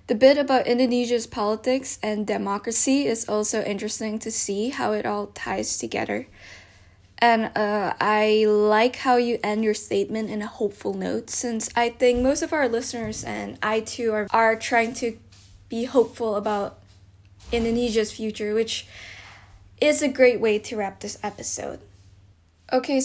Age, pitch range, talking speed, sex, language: 10-29, 205-245 Hz, 155 wpm, female, Indonesian